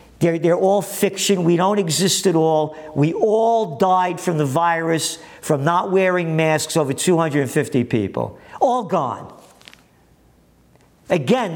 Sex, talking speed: male, 130 wpm